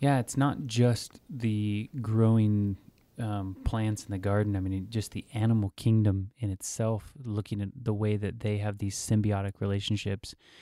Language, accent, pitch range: English, American, 100-115 Hz